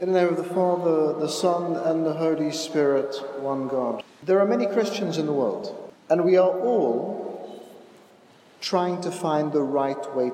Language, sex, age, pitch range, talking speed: English, male, 50-69, 155-200 Hz, 180 wpm